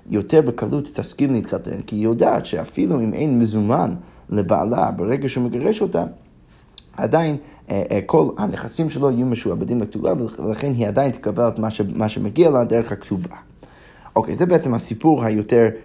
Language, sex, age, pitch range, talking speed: Hebrew, male, 30-49, 110-145 Hz, 160 wpm